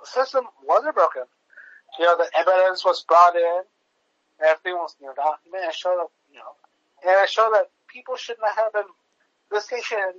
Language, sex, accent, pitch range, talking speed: English, male, American, 170-230 Hz, 195 wpm